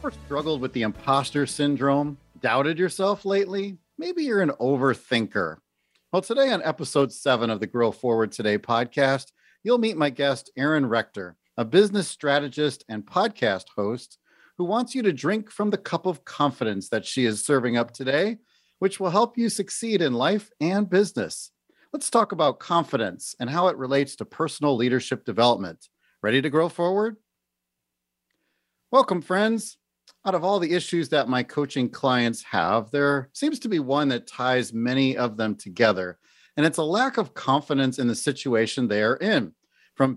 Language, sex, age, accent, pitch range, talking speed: English, male, 40-59, American, 120-180 Hz, 165 wpm